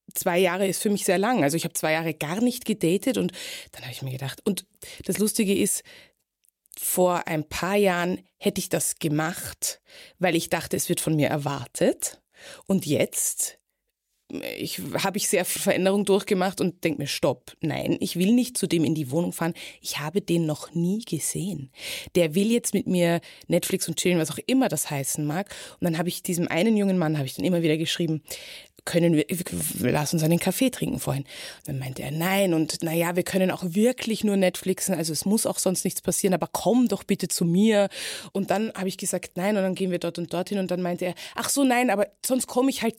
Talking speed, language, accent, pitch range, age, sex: 220 wpm, German, German, 170-205 Hz, 20-39, female